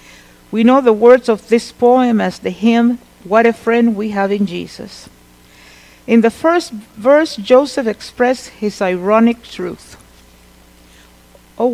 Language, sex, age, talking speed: English, female, 50-69, 140 wpm